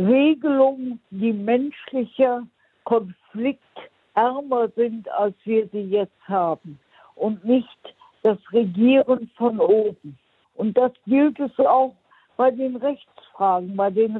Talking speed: 110 wpm